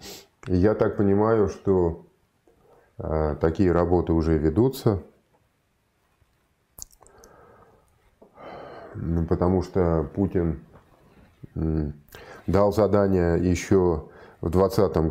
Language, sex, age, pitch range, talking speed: Russian, male, 20-39, 80-95 Hz, 65 wpm